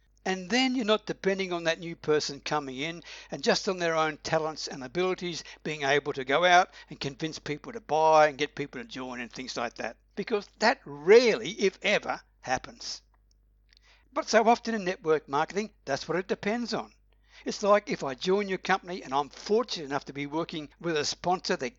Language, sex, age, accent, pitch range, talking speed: English, male, 60-79, Australian, 140-205 Hz, 200 wpm